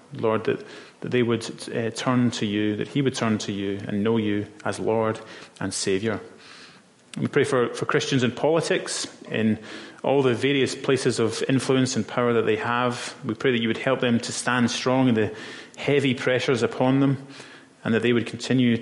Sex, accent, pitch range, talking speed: male, British, 110-125 Hz, 200 wpm